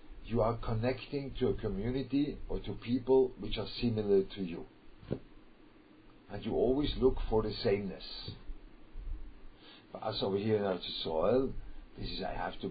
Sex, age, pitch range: male, 50-69, 95-115 Hz